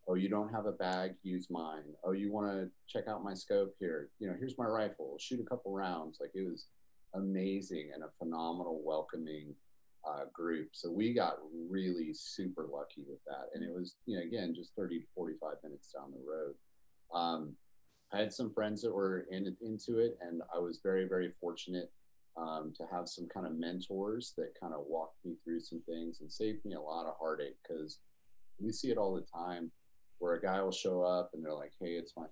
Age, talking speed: 30-49, 215 wpm